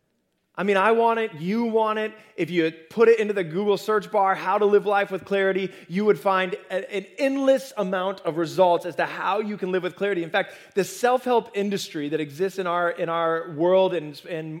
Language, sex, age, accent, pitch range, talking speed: English, male, 20-39, American, 160-205 Hz, 220 wpm